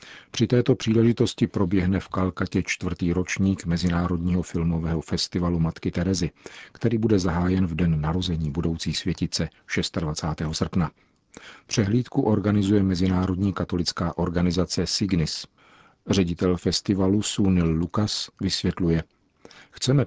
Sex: male